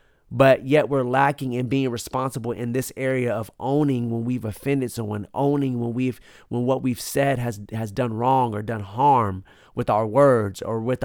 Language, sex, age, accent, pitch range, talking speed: English, male, 30-49, American, 110-130 Hz, 190 wpm